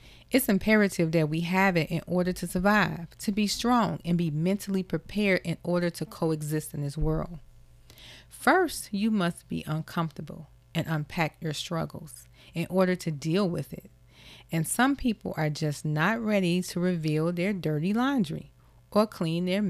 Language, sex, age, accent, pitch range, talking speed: English, female, 30-49, American, 155-220 Hz, 165 wpm